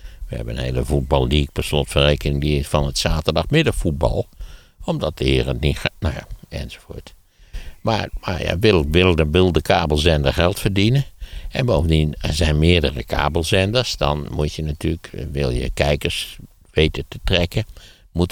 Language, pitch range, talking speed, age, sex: Dutch, 70-85 Hz, 145 wpm, 60-79, male